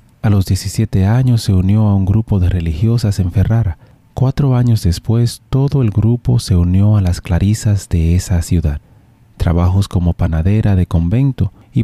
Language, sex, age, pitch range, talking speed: Spanish, male, 30-49, 90-115 Hz, 165 wpm